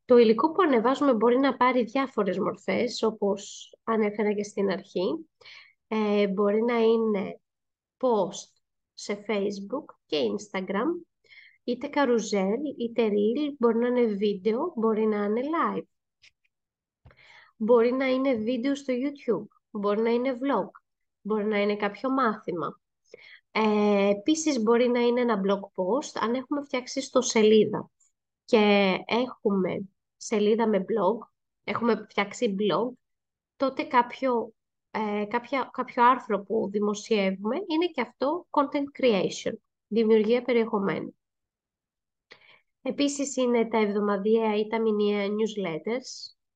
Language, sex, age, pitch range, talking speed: Greek, female, 20-39, 205-245 Hz, 115 wpm